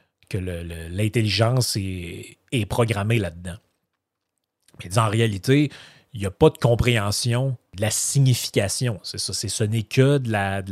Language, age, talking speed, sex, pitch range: French, 30-49, 160 wpm, male, 100-125 Hz